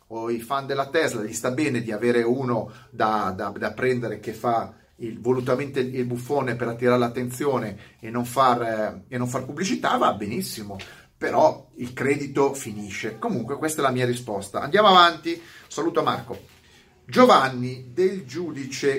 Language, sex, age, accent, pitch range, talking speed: Italian, male, 30-49, native, 120-175 Hz, 160 wpm